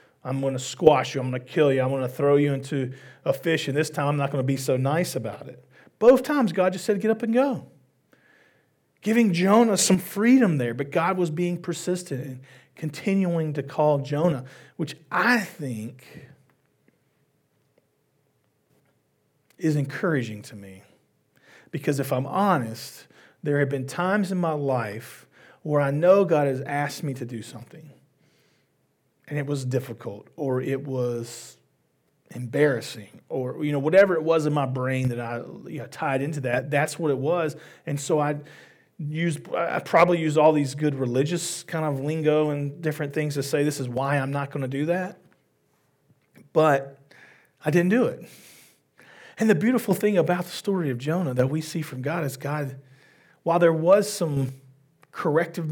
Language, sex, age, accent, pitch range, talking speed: English, male, 40-59, American, 135-170 Hz, 175 wpm